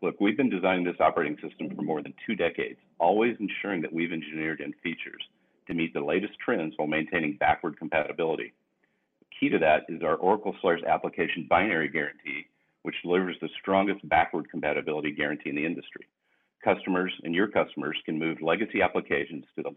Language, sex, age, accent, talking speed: English, male, 50-69, American, 180 wpm